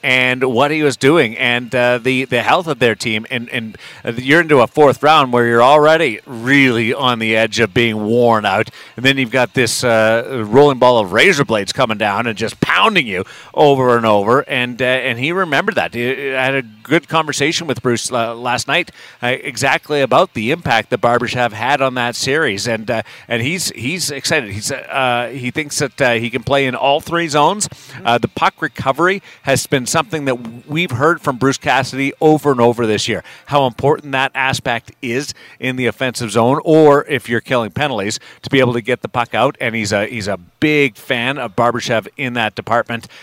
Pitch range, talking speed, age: 115-135 Hz, 210 wpm, 40-59